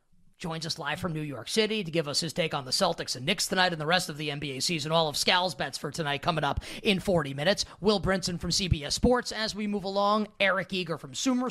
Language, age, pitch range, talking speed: English, 20-39, 160-195 Hz, 255 wpm